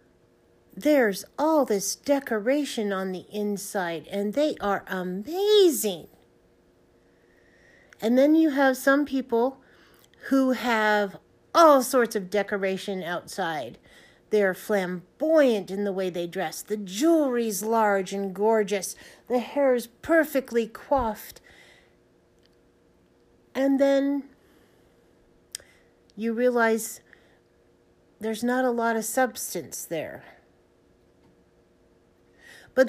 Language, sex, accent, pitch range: English, female, American, 195-265 Hz